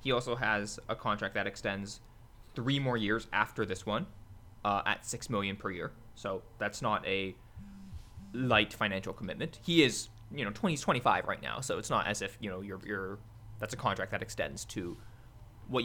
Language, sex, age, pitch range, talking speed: English, male, 20-39, 105-140 Hz, 195 wpm